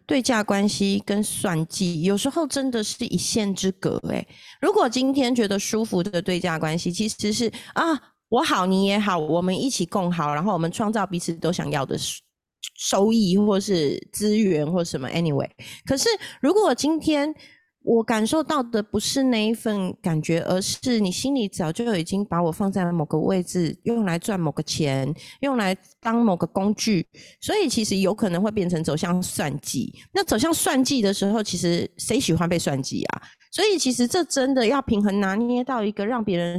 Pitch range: 175-255 Hz